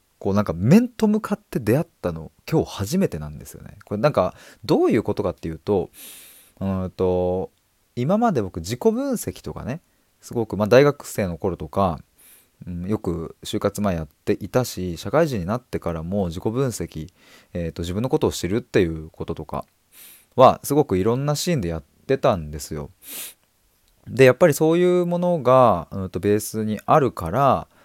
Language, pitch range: Japanese, 85-120 Hz